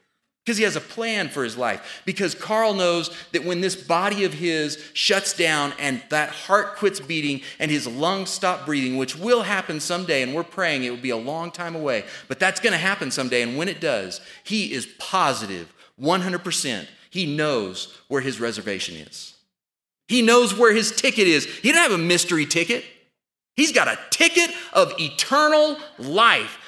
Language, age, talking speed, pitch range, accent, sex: English, 30-49, 185 wpm, 150-210 Hz, American, male